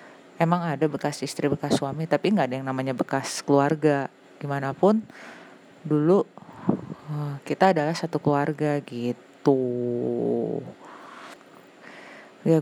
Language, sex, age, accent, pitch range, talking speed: Indonesian, female, 30-49, native, 140-160 Hz, 100 wpm